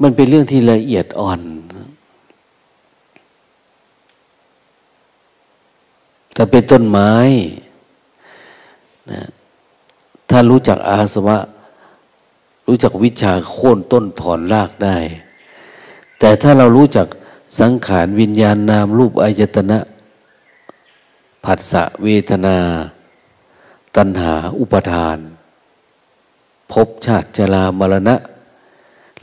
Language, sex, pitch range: Thai, male, 95-115 Hz